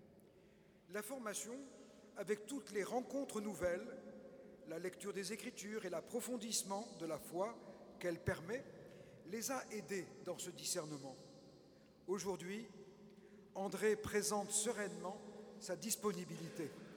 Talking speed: 105 wpm